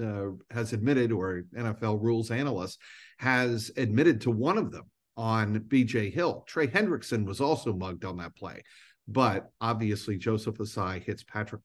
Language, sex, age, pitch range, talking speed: English, male, 50-69, 95-115 Hz, 155 wpm